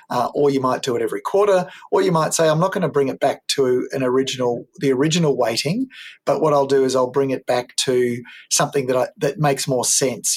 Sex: male